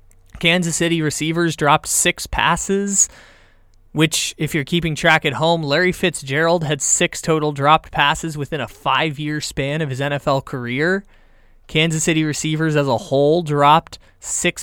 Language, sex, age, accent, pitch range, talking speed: English, male, 20-39, American, 140-175 Hz, 150 wpm